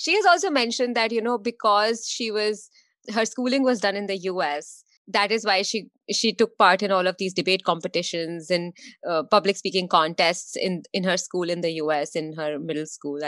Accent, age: Indian, 20-39